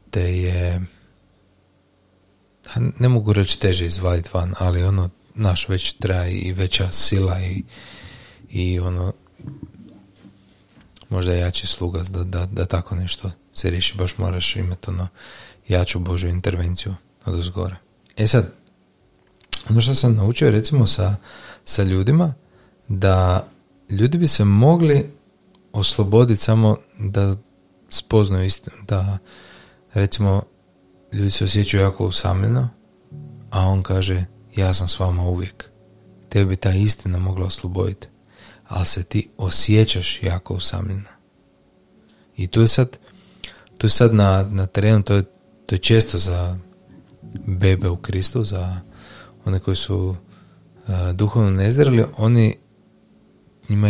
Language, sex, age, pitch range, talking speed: Croatian, male, 30-49, 90-105 Hz, 125 wpm